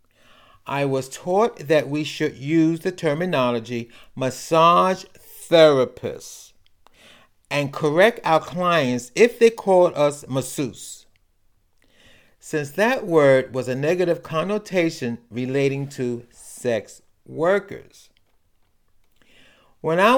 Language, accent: English, American